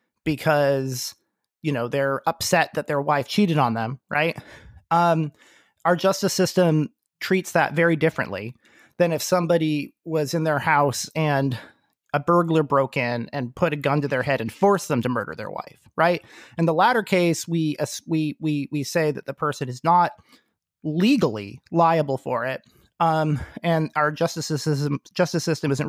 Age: 30-49